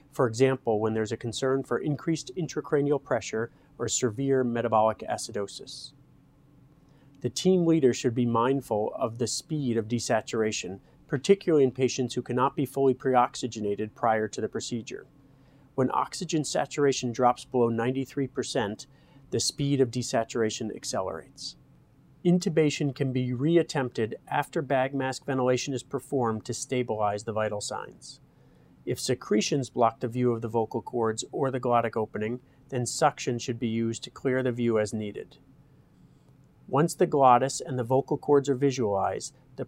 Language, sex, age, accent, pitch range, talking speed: English, male, 40-59, American, 115-140 Hz, 145 wpm